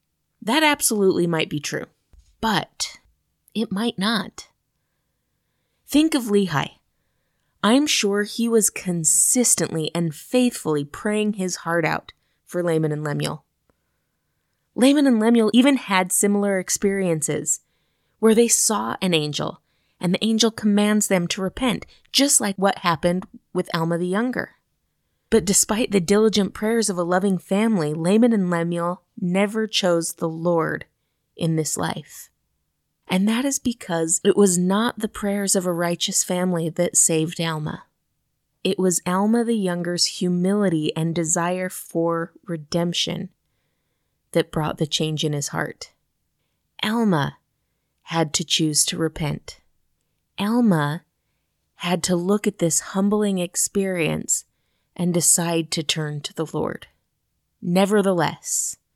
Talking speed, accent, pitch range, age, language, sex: 130 wpm, American, 165-210 Hz, 20-39, English, female